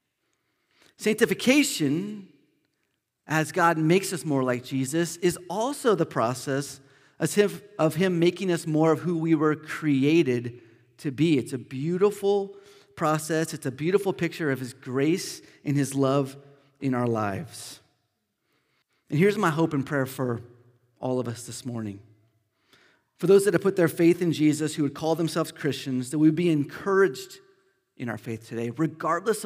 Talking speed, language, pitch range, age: 155 wpm, English, 130-180 Hz, 30-49